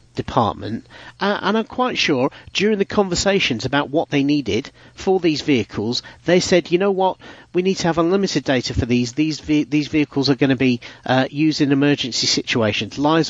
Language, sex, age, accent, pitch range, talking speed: English, male, 40-59, British, 115-155 Hz, 195 wpm